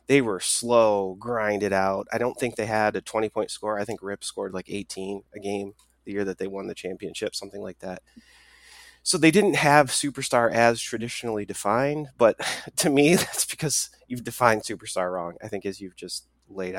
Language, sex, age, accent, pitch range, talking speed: English, male, 30-49, American, 100-130 Hz, 195 wpm